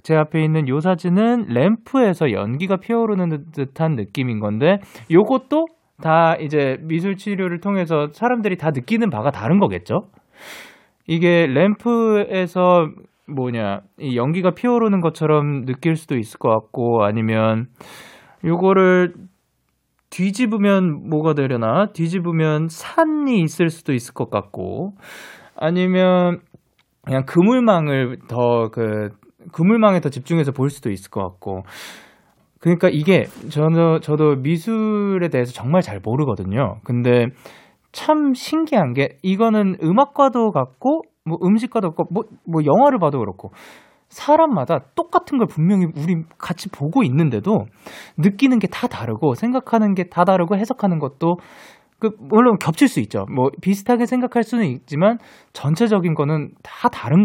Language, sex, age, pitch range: Korean, male, 20-39, 140-210 Hz